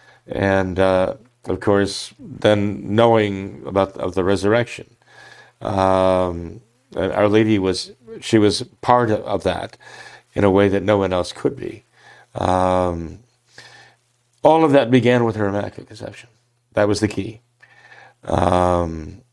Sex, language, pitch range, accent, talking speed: male, English, 90-115 Hz, American, 130 wpm